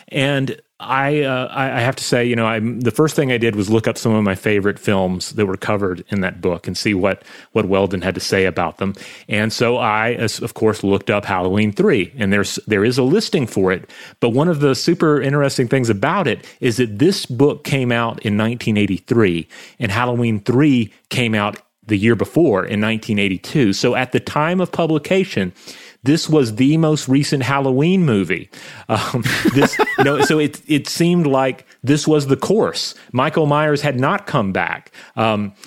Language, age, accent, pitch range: English, 30-49, American, 105-140 Hz